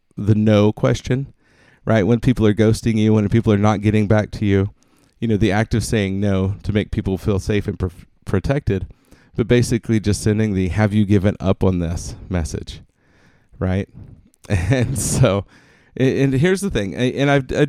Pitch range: 95-120 Hz